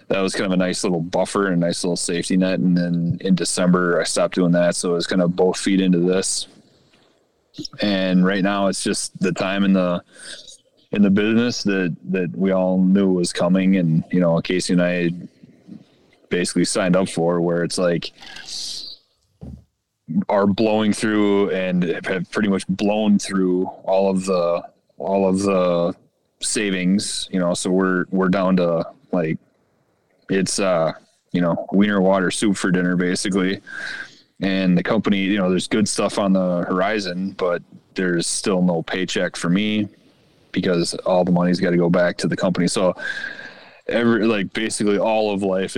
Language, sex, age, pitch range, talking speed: English, male, 30-49, 90-95 Hz, 175 wpm